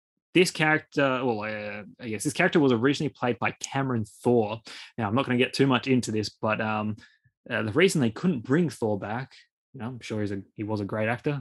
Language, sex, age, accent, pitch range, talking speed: English, male, 20-39, Australian, 110-140 Hz, 235 wpm